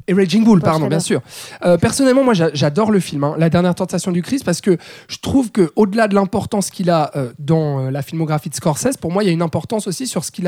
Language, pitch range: French, 165-210 Hz